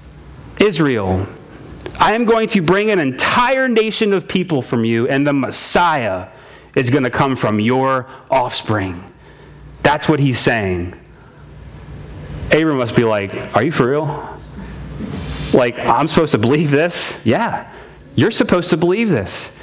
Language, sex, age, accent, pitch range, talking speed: English, male, 30-49, American, 110-175 Hz, 145 wpm